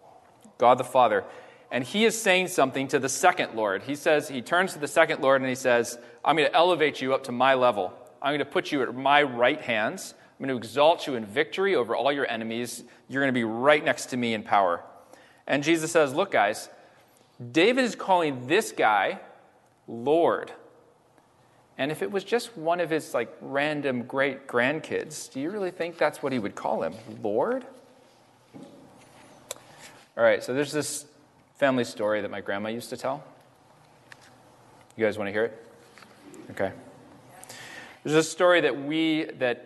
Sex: male